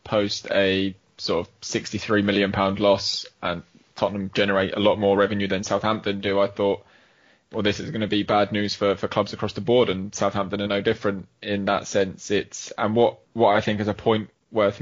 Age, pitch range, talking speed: 10-29, 100-110 Hz, 210 wpm